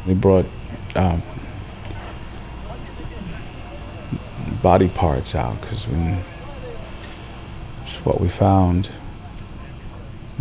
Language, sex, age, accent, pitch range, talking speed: English, male, 50-69, American, 90-110 Hz, 65 wpm